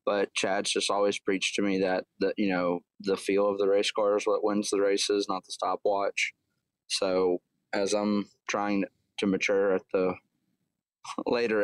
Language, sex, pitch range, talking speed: English, male, 95-110 Hz, 175 wpm